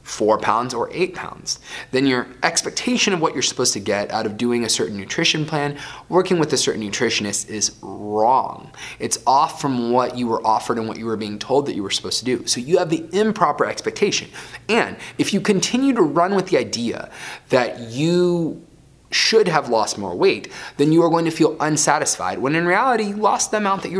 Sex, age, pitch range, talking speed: male, 20-39, 120-185 Hz, 215 wpm